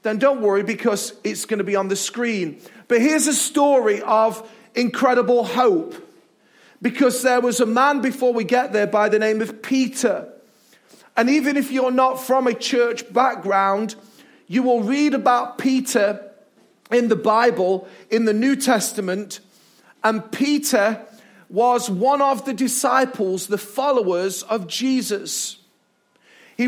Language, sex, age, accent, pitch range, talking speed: English, male, 40-59, British, 225-275 Hz, 145 wpm